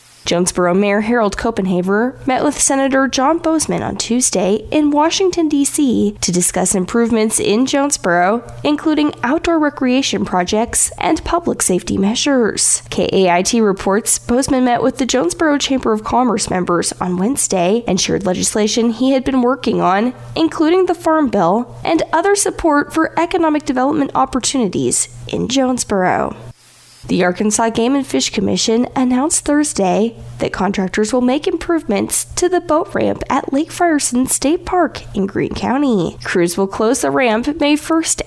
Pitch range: 205-295 Hz